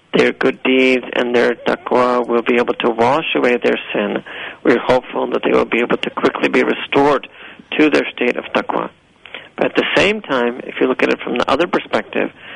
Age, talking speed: 40-59, 210 wpm